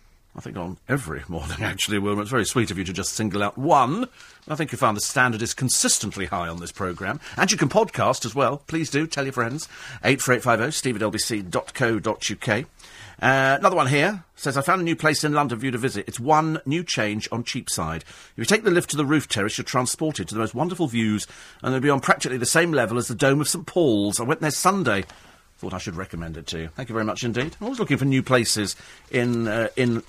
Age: 40-59